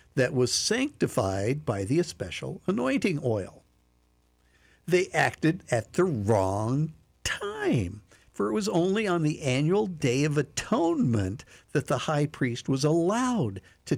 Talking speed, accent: 135 wpm, American